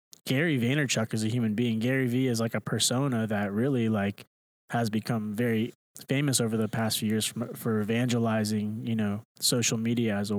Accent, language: American, English